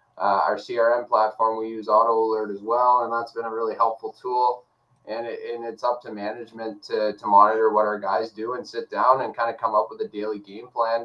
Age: 20-39